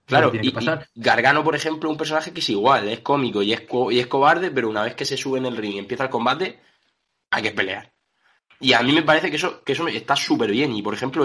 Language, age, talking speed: Spanish, 20-39, 265 wpm